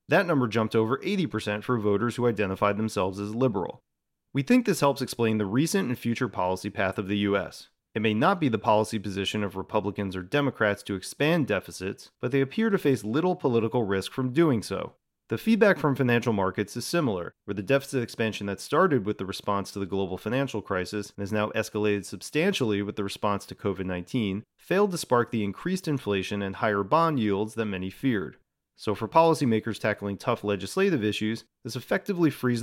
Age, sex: 30-49, male